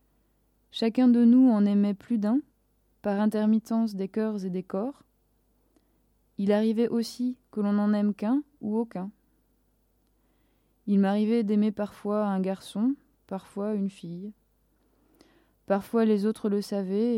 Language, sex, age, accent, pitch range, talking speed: French, female, 20-39, French, 205-235 Hz, 135 wpm